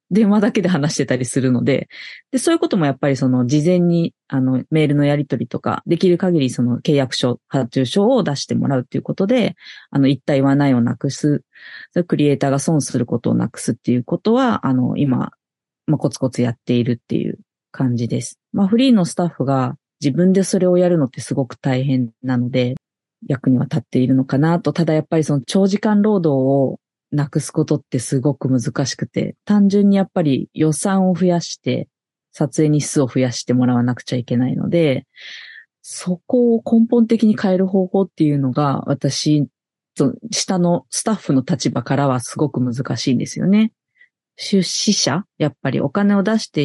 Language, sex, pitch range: Japanese, female, 130-180 Hz